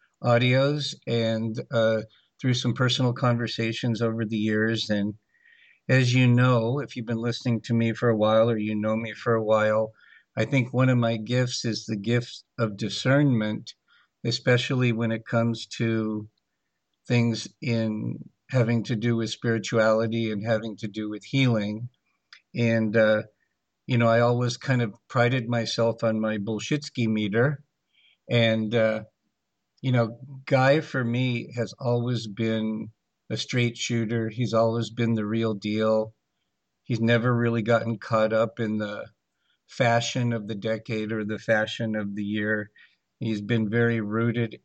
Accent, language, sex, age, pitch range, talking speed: American, English, male, 50-69, 110-120 Hz, 155 wpm